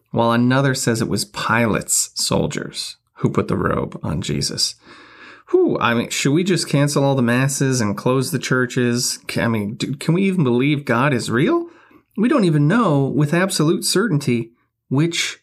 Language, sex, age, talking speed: English, male, 30-49, 170 wpm